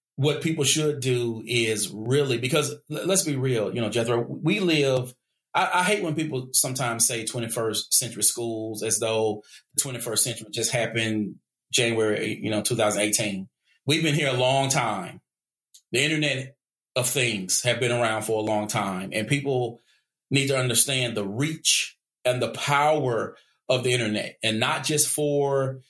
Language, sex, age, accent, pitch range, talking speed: English, male, 30-49, American, 115-135 Hz, 160 wpm